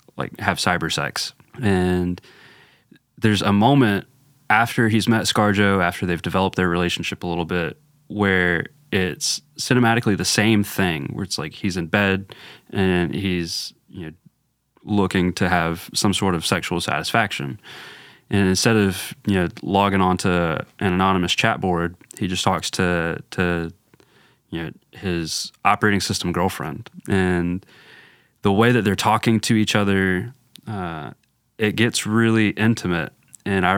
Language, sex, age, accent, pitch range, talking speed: English, male, 20-39, American, 90-105 Hz, 145 wpm